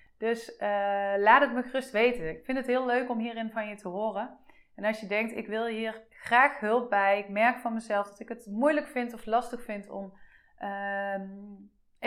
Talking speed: 210 wpm